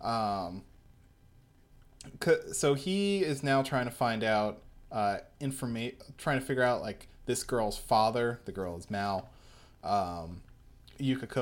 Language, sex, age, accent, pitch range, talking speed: English, male, 20-39, American, 110-145 Hz, 130 wpm